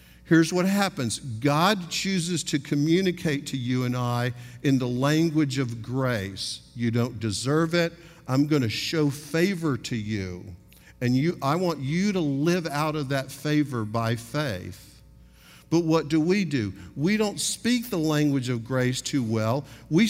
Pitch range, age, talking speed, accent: 120-165 Hz, 50-69, 165 wpm, American